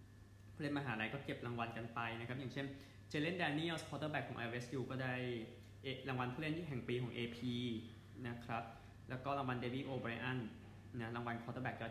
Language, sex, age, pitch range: Thai, male, 20-39, 110-130 Hz